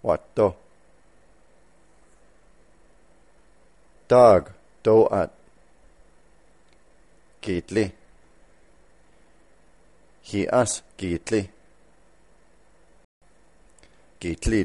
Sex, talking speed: male, 40 wpm